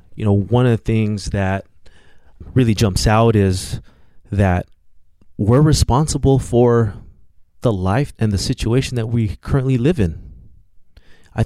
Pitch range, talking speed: 95-120 Hz, 135 wpm